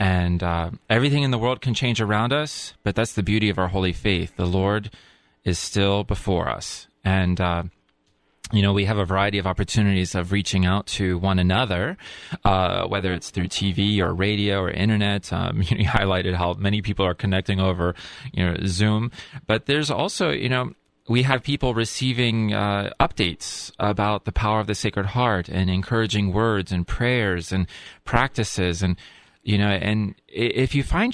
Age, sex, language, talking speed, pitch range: 30-49, male, English, 185 wpm, 95-110 Hz